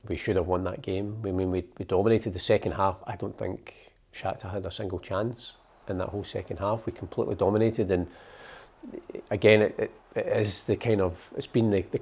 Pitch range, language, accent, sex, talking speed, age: 90-105 Hz, English, British, male, 215 wpm, 40-59